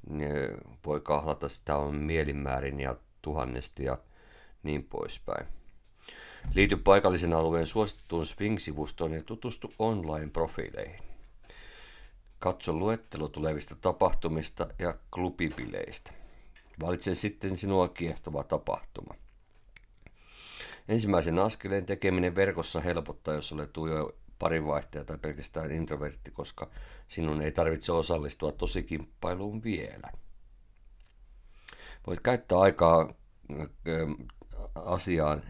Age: 50-69